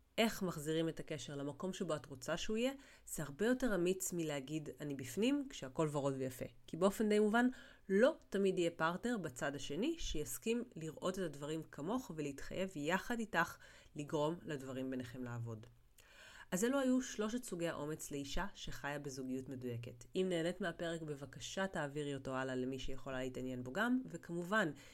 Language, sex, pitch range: Hebrew, female, 140-190 Hz